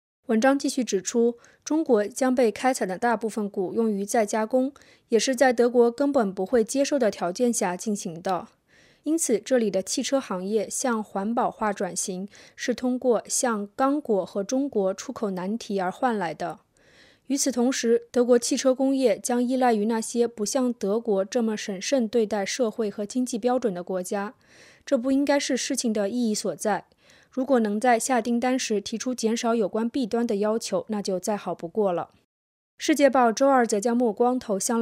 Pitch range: 205-255 Hz